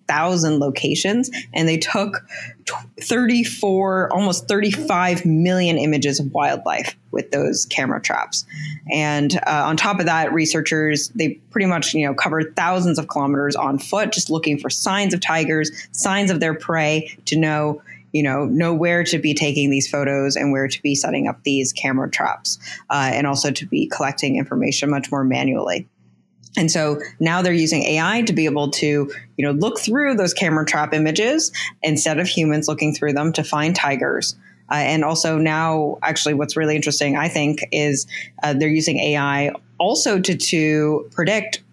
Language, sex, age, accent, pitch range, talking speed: English, female, 20-39, American, 145-165 Hz, 175 wpm